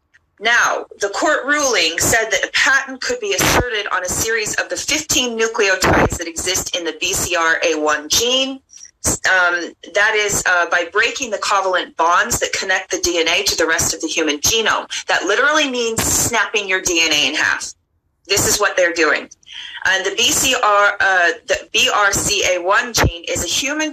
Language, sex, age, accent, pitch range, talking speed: English, female, 30-49, American, 165-265 Hz, 170 wpm